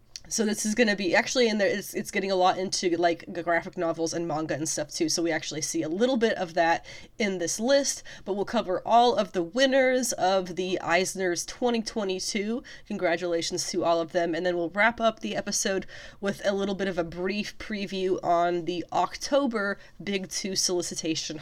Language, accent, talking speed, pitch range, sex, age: English, American, 200 wpm, 170-205 Hz, female, 20-39